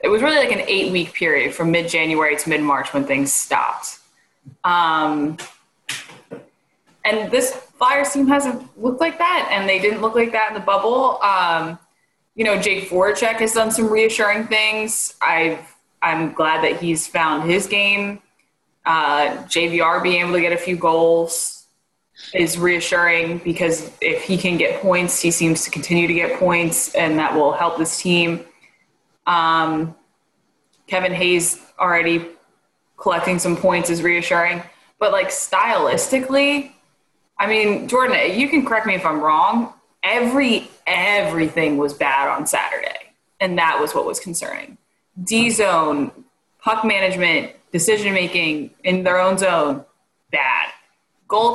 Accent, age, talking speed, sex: American, 20-39, 145 wpm, female